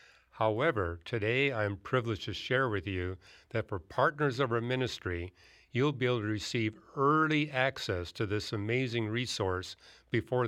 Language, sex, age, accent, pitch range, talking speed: English, male, 50-69, American, 105-125 Hz, 155 wpm